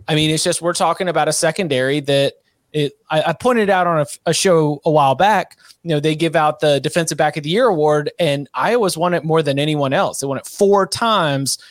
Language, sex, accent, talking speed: English, male, American, 235 wpm